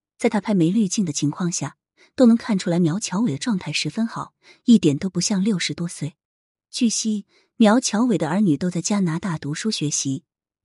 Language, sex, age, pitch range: Chinese, female, 20-39, 155-215 Hz